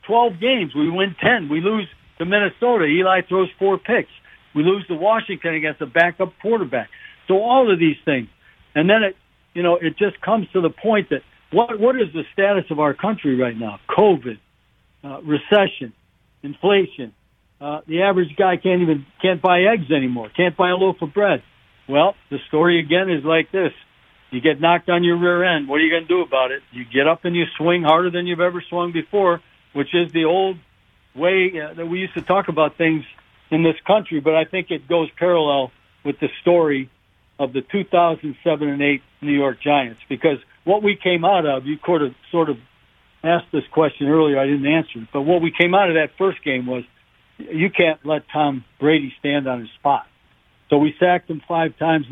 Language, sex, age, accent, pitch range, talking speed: English, male, 60-79, American, 145-180 Hz, 200 wpm